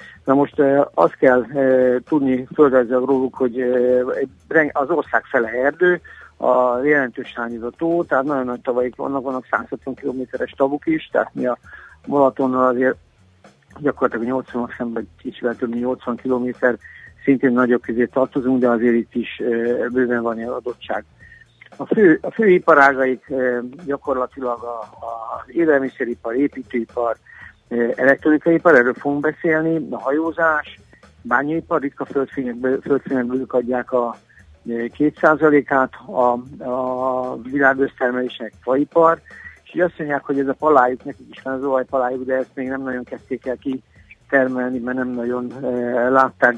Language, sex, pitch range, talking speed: Hungarian, male, 125-140 Hz, 140 wpm